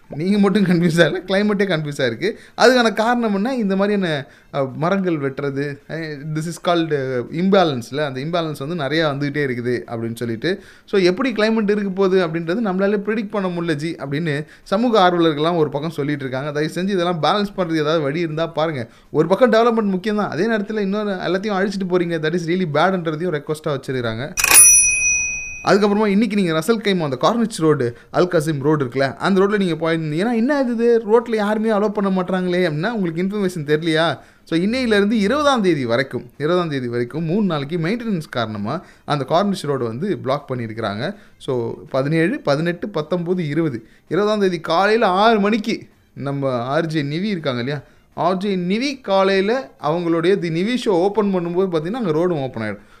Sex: male